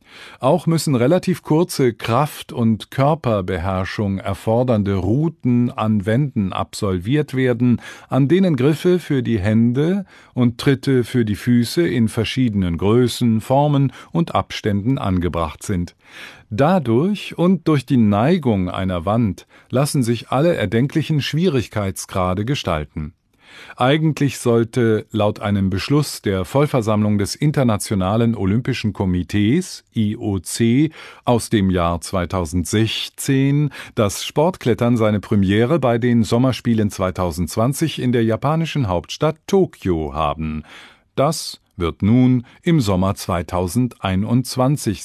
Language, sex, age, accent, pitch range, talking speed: English, male, 50-69, German, 100-140 Hz, 110 wpm